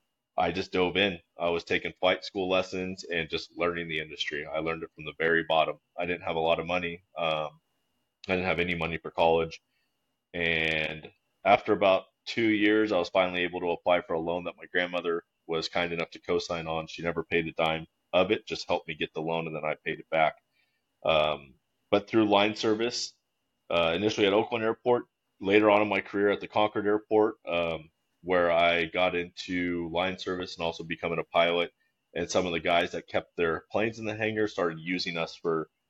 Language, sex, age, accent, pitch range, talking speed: English, male, 20-39, American, 80-95 Hz, 210 wpm